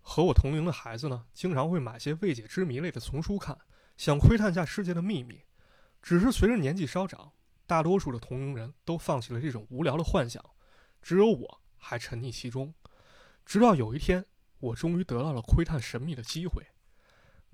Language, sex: Chinese, male